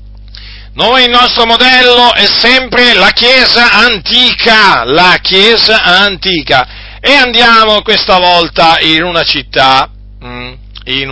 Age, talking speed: 40-59, 110 wpm